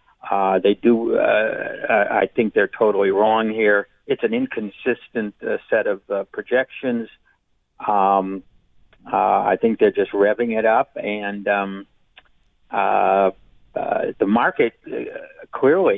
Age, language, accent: 50-69, English, American